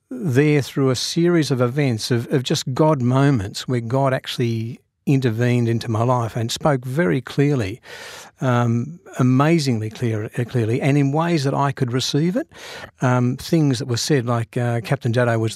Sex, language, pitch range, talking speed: male, English, 115-150 Hz, 165 wpm